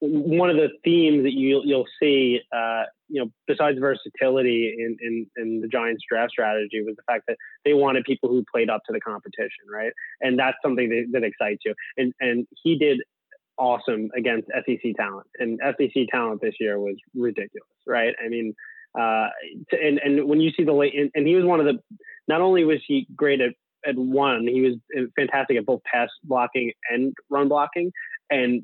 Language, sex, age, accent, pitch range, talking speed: English, male, 20-39, American, 120-150 Hz, 195 wpm